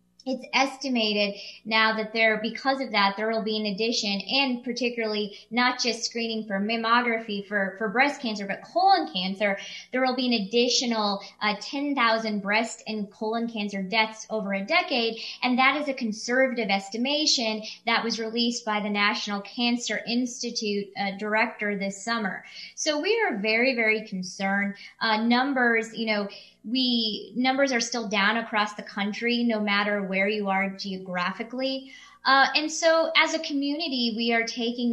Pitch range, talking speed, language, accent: 205-240 Hz, 160 wpm, English, American